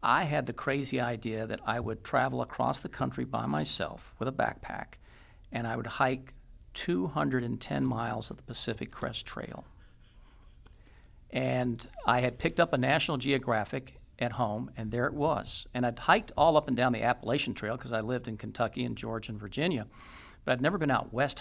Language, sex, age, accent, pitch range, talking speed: English, male, 50-69, American, 110-130 Hz, 190 wpm